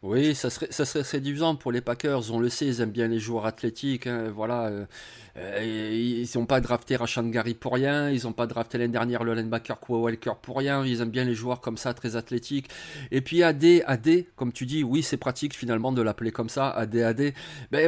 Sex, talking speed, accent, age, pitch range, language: male, 230 wpm, French, 30-49, 130-170 Hz, French